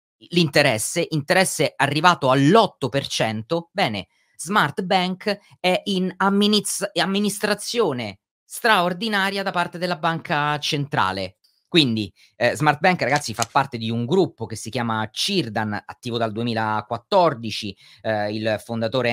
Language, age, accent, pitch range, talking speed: Italian, 30-49, native, 125-190 Hz, 115 wpm